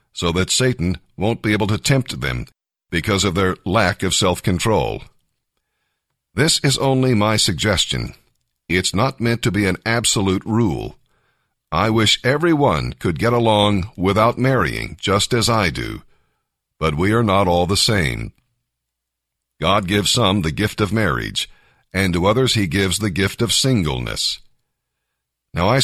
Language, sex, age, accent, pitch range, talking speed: English, male, 50-69, American, 95-120 Hz, 150 wpm